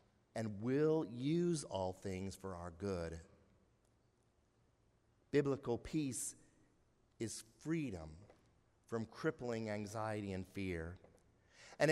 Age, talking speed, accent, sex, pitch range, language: 50-69, 90 wpm, American, male, 105-145 Hz, English